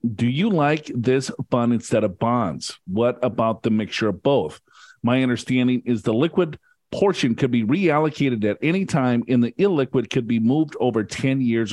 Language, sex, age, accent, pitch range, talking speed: English, male, 50-69, American, 120-155 Hz, 180 wpm